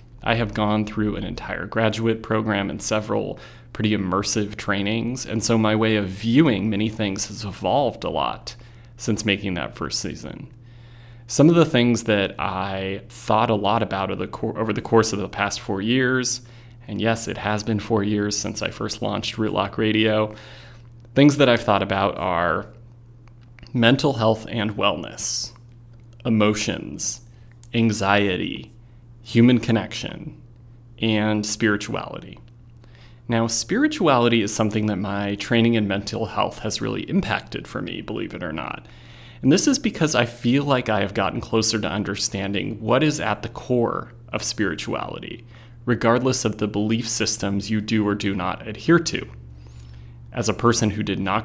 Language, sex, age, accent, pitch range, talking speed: English, male, 30-49, American, 105-120 Hz, 155 wpm